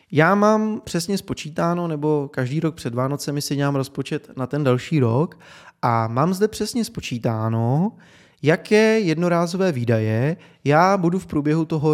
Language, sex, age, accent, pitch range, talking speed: Czech, male, 20-39, native, 130-170 Hz, 145 wpm